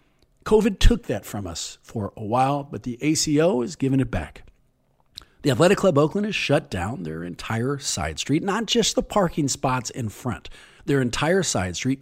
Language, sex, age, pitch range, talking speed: English, male, 40-59, 120-195 Hz, 185 wpm